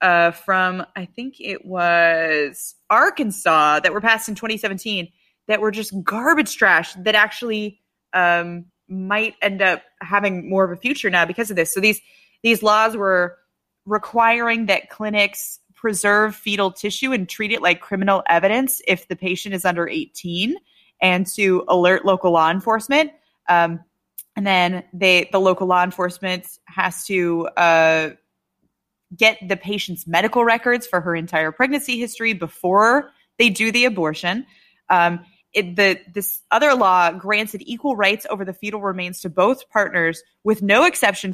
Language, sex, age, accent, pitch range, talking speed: English, female, 20-39, American, 180-225 Hz, 155 wpm